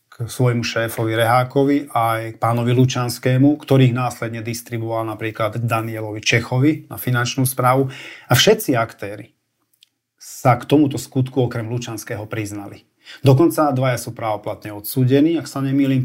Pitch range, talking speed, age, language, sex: 115-135 Hz, 130 wpm, 40-59, Slovak, male